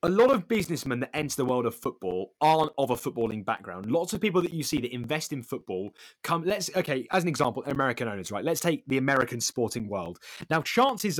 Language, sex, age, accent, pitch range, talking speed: English, male, 20-39, British, 120-185 Hz, 225 wpm